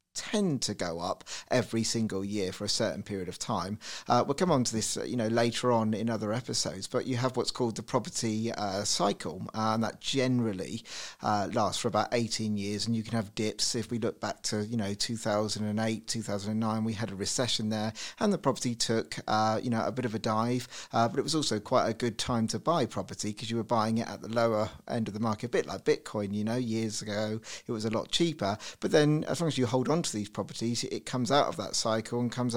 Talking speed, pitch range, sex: 255 wpm, 105-120 Hz, male